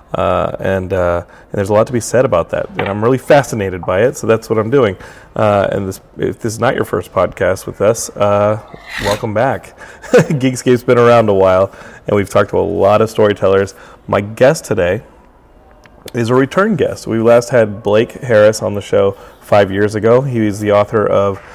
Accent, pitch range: American, 95-115 Hz